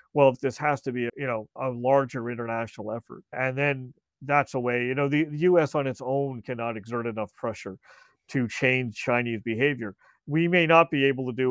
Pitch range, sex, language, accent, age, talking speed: 120-145 Hz, male, English, American, 40-59, 215 wpm